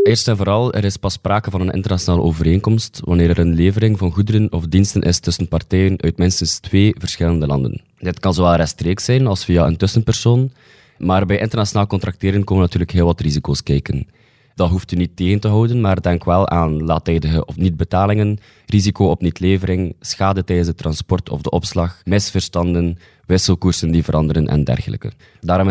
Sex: male